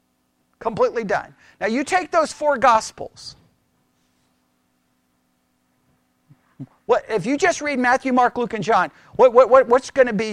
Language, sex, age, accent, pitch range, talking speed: English, male, 50-69, American, 160-255 Hz, 145 wpm